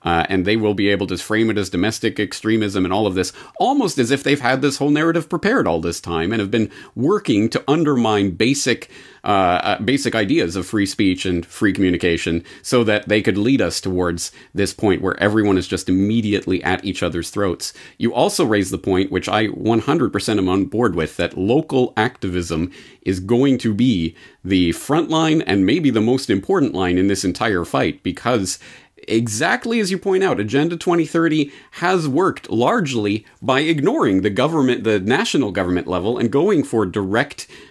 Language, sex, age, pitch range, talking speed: English, male, 40-59, 95-135 Hz, 190 wpm